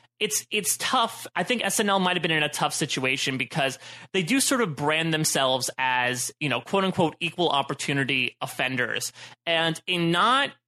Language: English